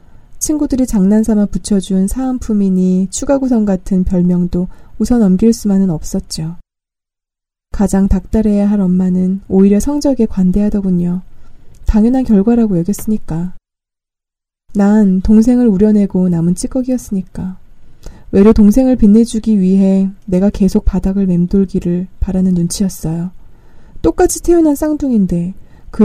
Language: Korean